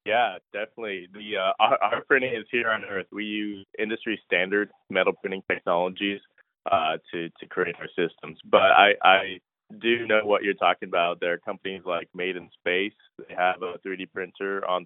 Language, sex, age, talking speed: English, male, 20-39, 185 wpm